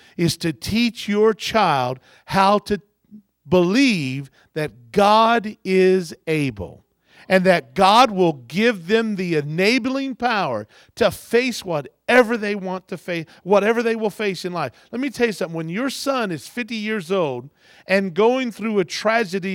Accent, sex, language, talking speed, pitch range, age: American, male, English, 155 wpm, 155-215 Hz, 50-69